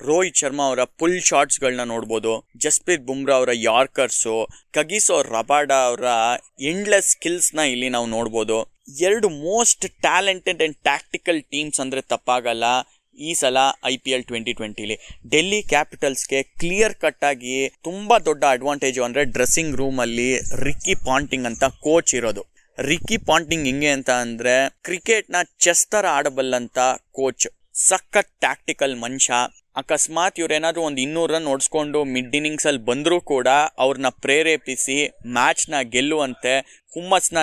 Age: 20-39